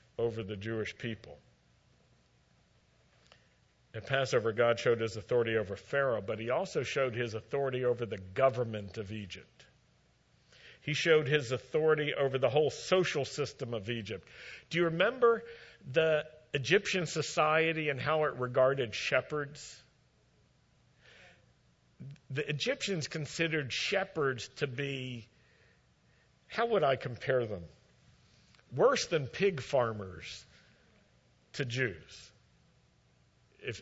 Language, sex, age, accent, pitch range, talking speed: English, male, 50-69, American, 115-145 Hz, 110 wpm